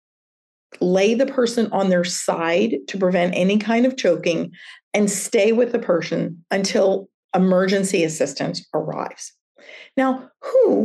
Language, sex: English, female